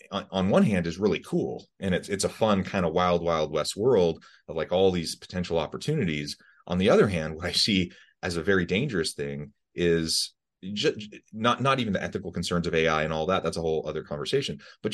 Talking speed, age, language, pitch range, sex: 215 wpm, 30-49, English, 80-100 Hz, male